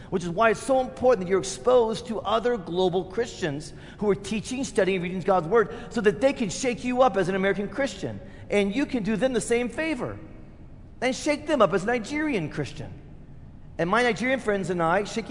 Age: 40-59